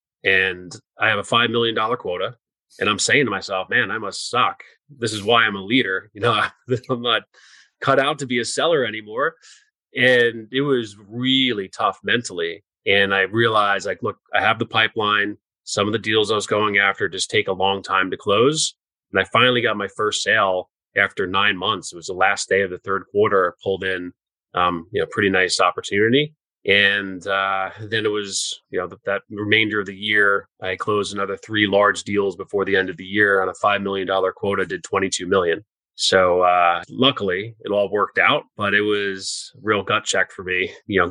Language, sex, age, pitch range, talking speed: English, male, 30-49, 95-115 Hz, 210 wpm